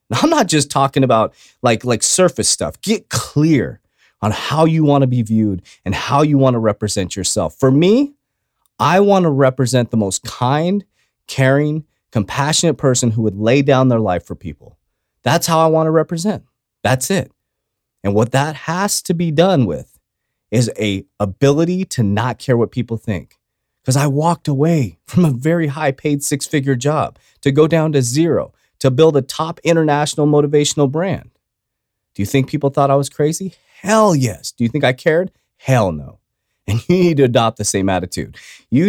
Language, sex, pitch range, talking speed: English, male, 120-165 Hz, 185 wpm